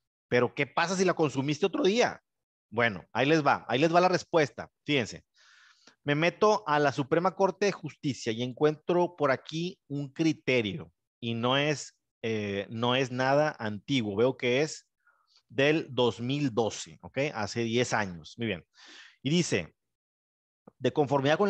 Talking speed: 155 wpm